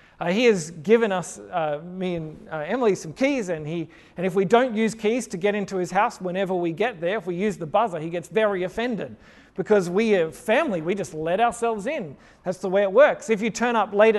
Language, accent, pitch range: English, Australian, 185-235 Hz